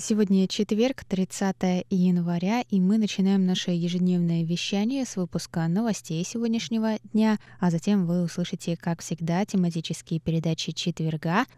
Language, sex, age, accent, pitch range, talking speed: Russian, female, 20-39, native, 165-195 Hz, 125 wpm